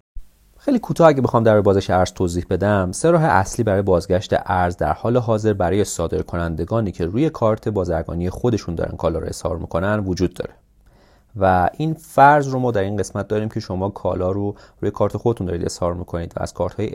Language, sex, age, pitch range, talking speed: Persian, male, 30-49, 90-120 Hz, 185 wpm